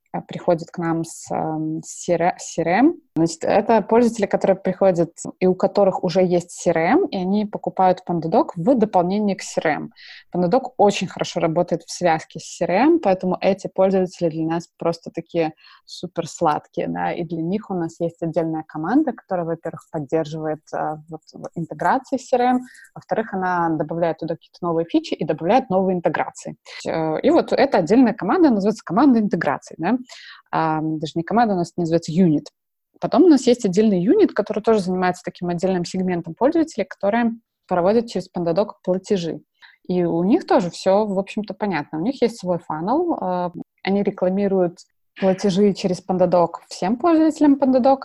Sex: female